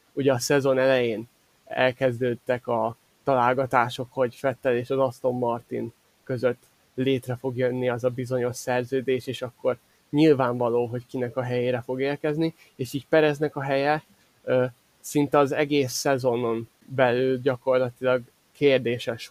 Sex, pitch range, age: male, 125-145 Hz, 20-39